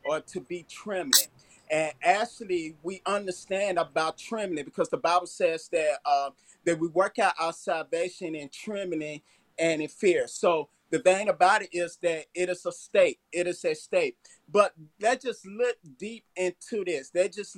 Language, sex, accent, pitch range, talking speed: English, male, American, 175-235 Hz, 175 wpm